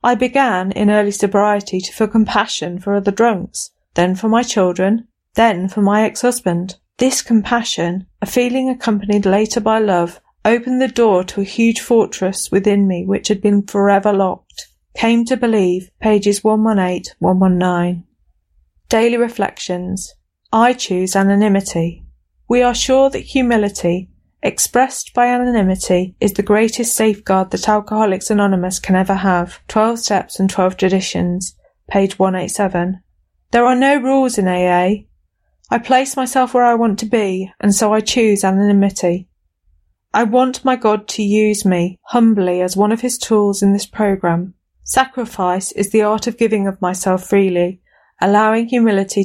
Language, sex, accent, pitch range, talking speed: English, female, British, 185-230 Hz, 150 wpm